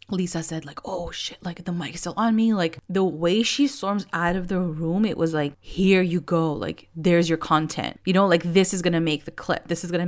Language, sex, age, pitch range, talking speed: English, female, 20-39, 165-195 Hz, 250 wpm